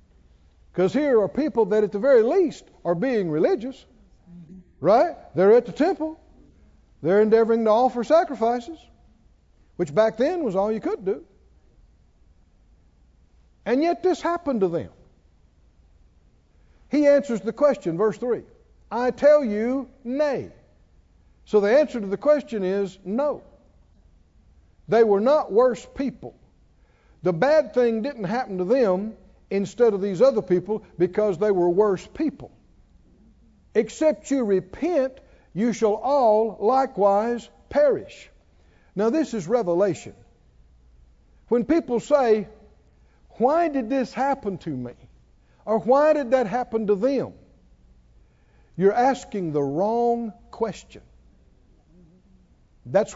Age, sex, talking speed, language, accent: 60-79, male, 125 wpm, English, American